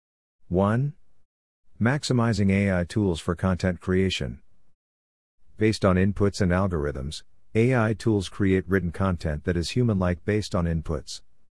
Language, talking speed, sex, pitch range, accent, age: English, 120 wpm, male, 85-100 Hz, American, 50-69